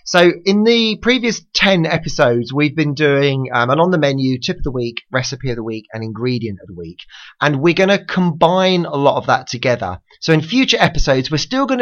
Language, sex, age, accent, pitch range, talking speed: English, male, 30-49, British, 125-175 Hz, 225 wpm